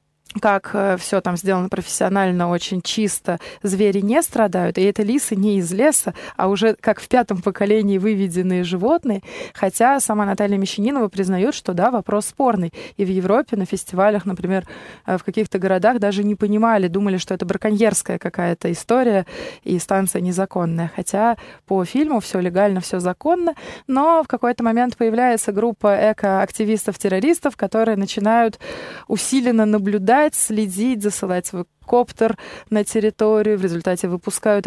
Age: 20-39